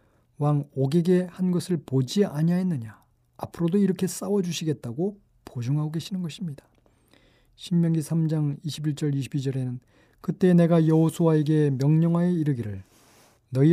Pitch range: 130-175 Hz